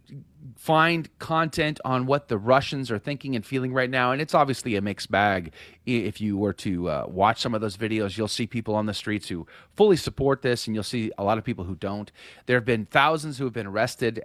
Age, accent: 30-49, American